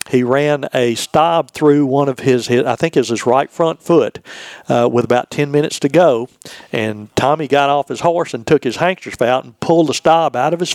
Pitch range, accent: 125-155 Hz, American